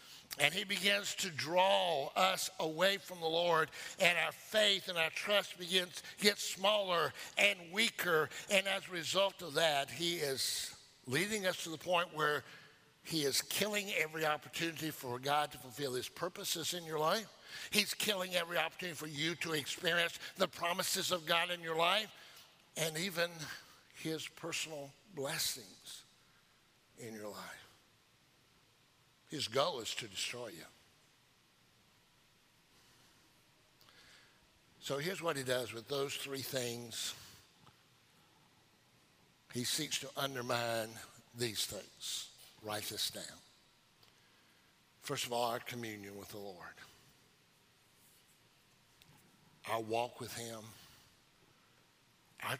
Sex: male